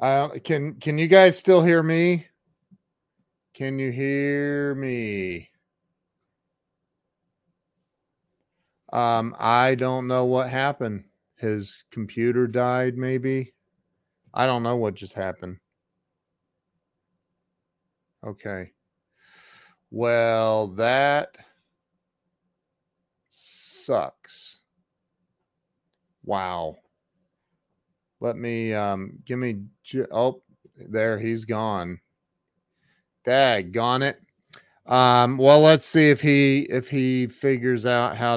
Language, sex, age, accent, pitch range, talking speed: English, male, 40-59, American, 100-130 Hz, 90 wpm